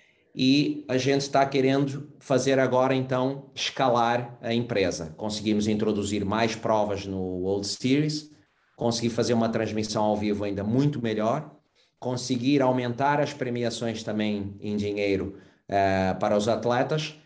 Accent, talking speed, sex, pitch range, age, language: Brazilian, 130 wpm, male, 105-130 Hz, 30-49, Portuguese